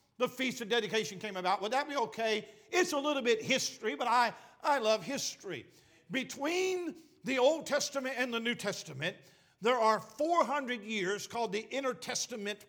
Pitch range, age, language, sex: 205-275 Hz, 50-69, English, male